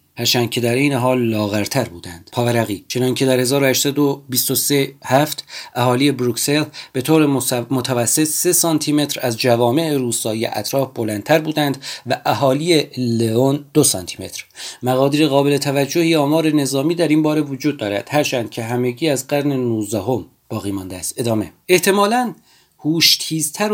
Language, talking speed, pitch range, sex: Persian, 140 wpm, 120-150 Hz, male